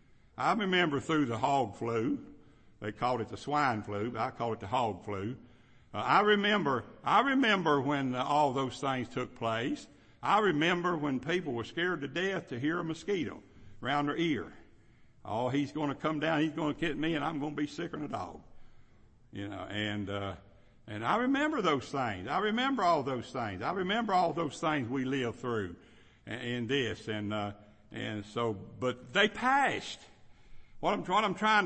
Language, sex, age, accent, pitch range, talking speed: English, male, 60-79, American, 120-180 Hz, 195 wpm